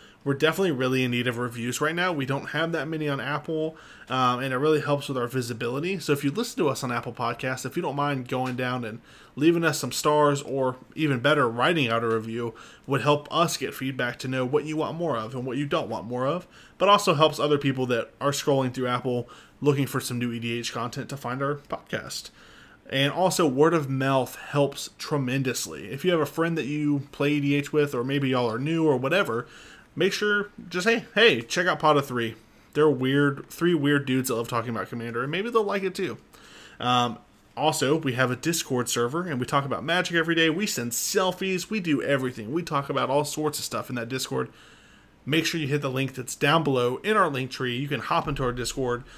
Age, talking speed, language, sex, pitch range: 20-39, 230 wpm, English, male, 125-155 Hz